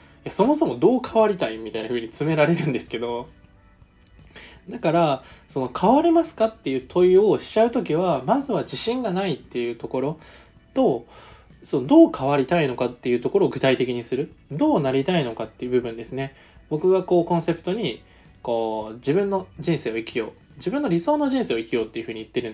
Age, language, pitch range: 20-39, Japanese, 120-200 Hz